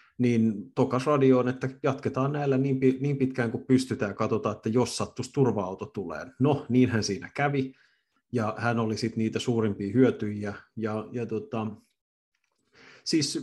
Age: 30-49